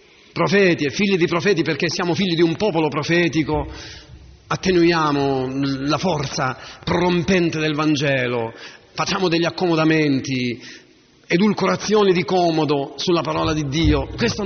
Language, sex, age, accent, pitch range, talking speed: Italian, male, 40-59, native, 150-195 Hz, 120 wpm